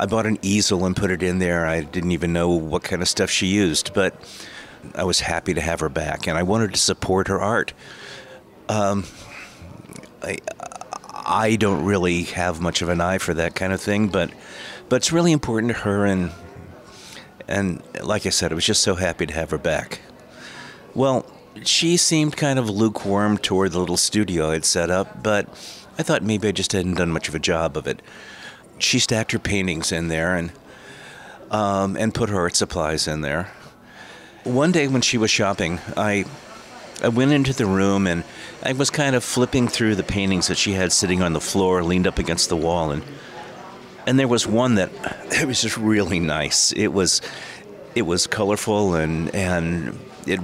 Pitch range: 90-115 Hz